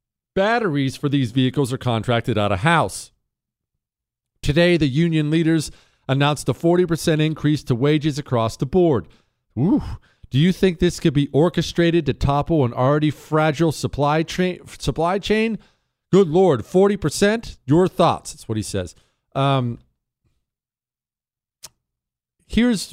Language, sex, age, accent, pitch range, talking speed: English, male, 40-59, American, 125-165 Hz, 130 wpm